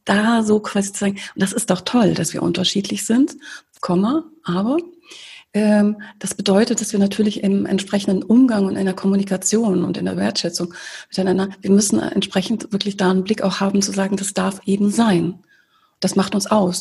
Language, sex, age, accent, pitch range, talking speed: German, female, 30-49, German, 180-205 Hz, 185 wpm